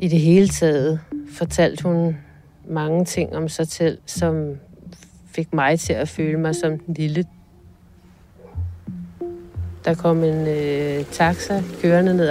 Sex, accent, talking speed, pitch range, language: female, native, 135 wpm, 150-180 Hz, Danish